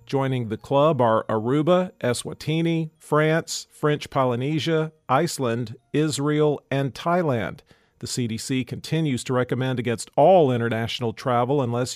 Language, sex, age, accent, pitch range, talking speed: English, male, 50-69, American, 125-155 Hz, 115 wpm